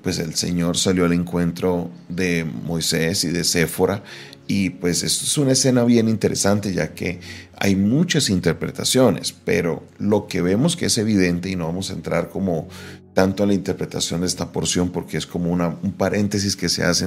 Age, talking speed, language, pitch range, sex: 40-59, 185 wpm, Spanish, 85-105 Hz, male